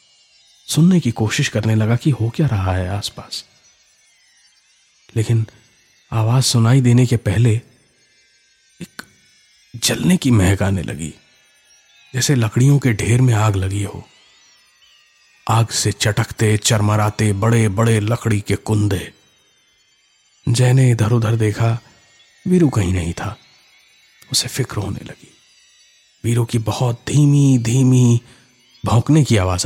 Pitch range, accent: 100-125 Hz, native